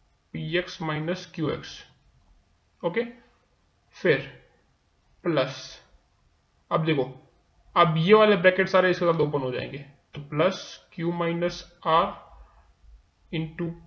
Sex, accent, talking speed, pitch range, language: male, native, 105 wpm, 160-195 Hz, Hindi